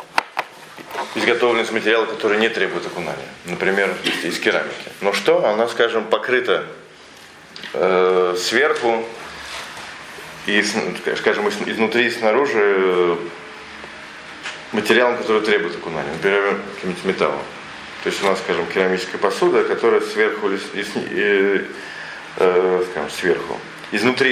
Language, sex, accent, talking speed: Russian, male, native, 120 wpm